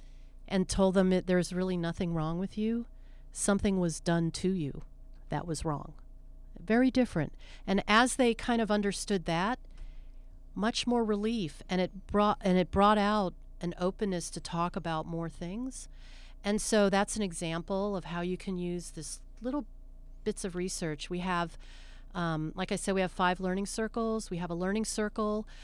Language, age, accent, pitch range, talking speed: English, 40-59, American, 170-205 Hz, 170 wpm